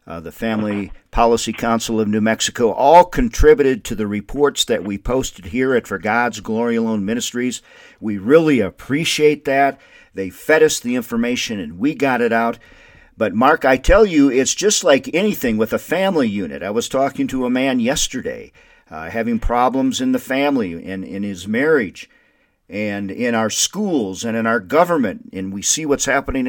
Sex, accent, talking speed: male, American, 180 wpm